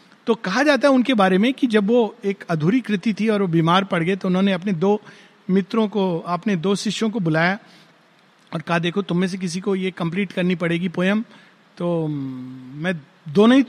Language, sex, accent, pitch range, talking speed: Hindi, male, native, 175-215 Hz, 205 wpm